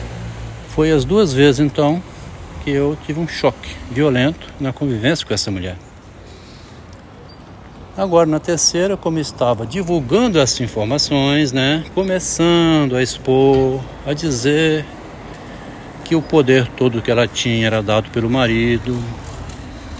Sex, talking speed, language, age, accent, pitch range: male, 125 wpm, Portuguese, 60-79, Brazilian, 100-135 Hz